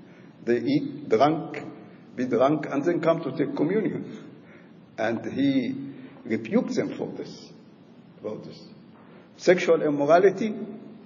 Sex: male